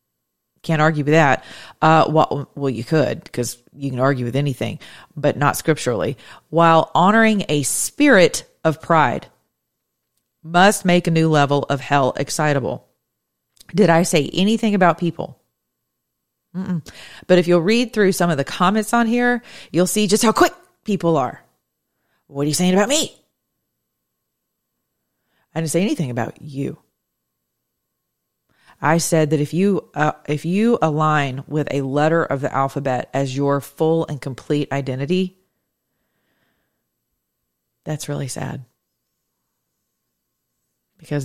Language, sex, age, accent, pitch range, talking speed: English, female, 40-59, American, 130-165 Hz, 140 wpm